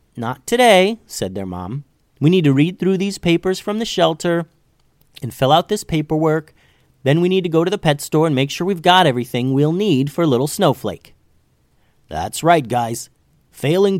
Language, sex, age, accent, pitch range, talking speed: English, male, 30-49, American, 125-160 Hz, 190 wpm